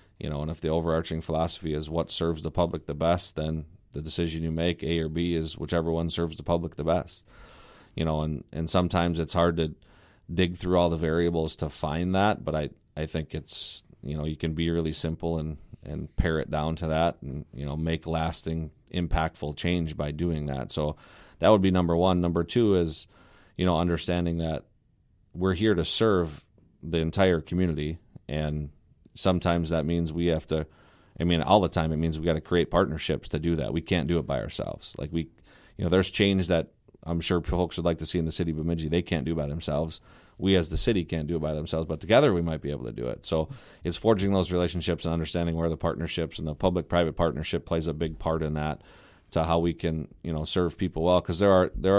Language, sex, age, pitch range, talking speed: English, male, 40-59, 80-90 Hz, 230 wpm